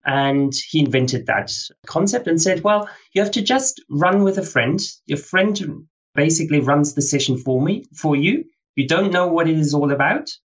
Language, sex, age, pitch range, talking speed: English, male, 30-49, 130-180 Hz, 195 wpm